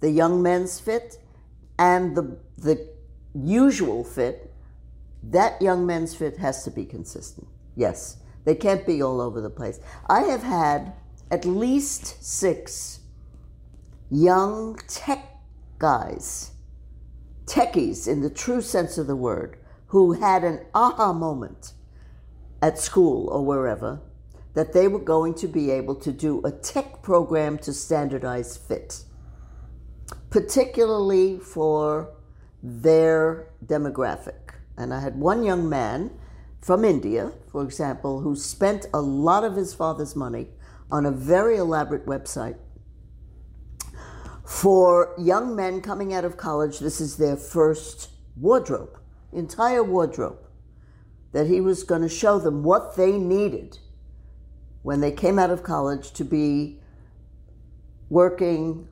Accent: American